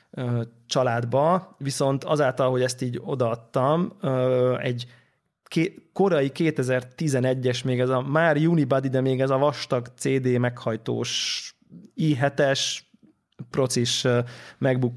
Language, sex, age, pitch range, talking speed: Hungarian, male, 20-39, 120-145 Hz, 100 wpm